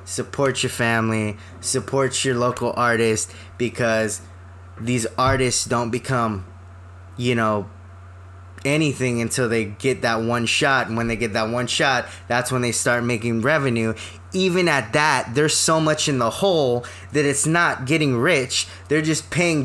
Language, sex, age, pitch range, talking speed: English, male, 20-39, 110-140 Hz, 155 wpm